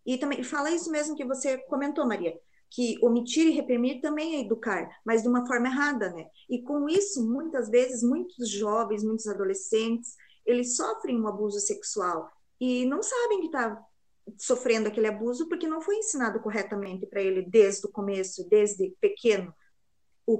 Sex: female